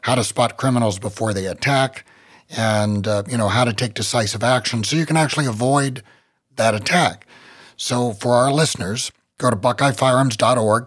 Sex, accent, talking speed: male, American, 165 wpm